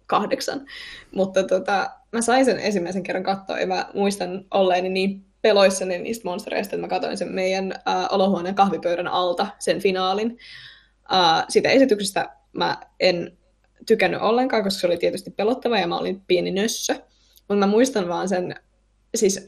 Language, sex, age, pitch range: Finnish, female, 10-29, 180-230 Hz